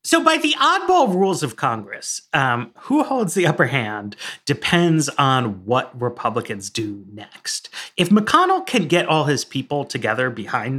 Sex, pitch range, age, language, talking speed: male, 125-190 Hz, 30-49, English, 155 wpm